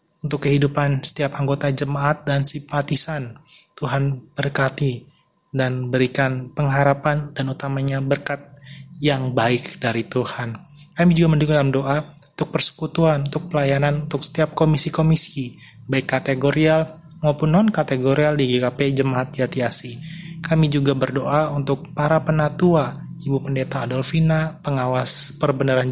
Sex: male